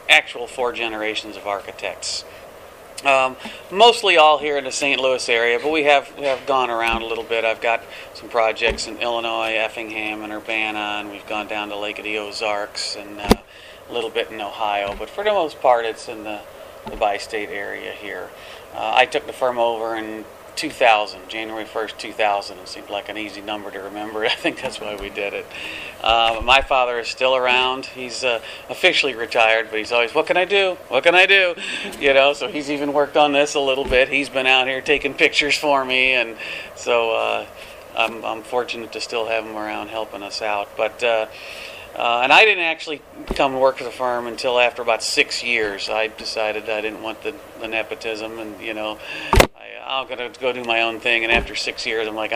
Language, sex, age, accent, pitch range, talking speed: English, male, 40-59, American, 110-135 Hz, 210 wpm